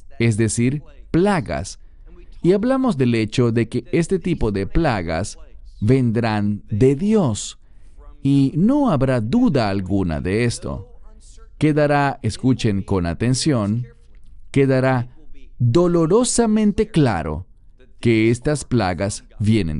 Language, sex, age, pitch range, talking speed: English, male, 40-59, 105-150 Hz, 105 wpm